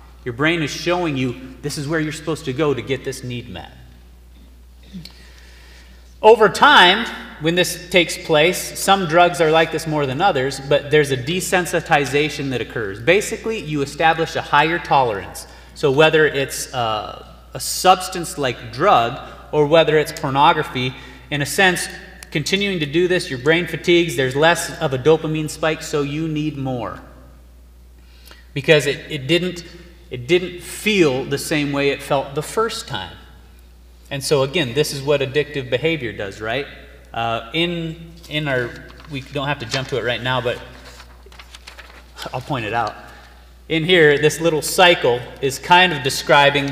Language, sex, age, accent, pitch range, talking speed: English, male, 30-49, American, 125-160 Hz, 160 wpm